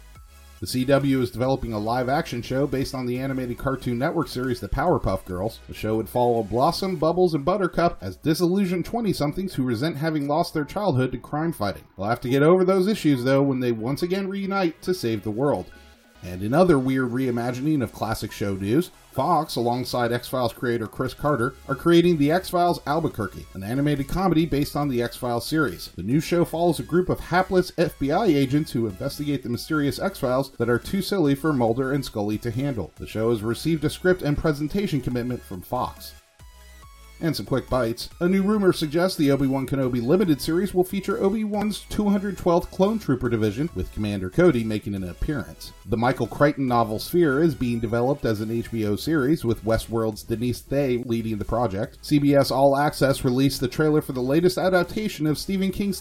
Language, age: English, 30-49